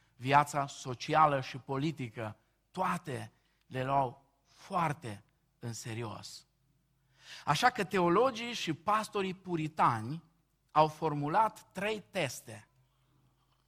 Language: Romanian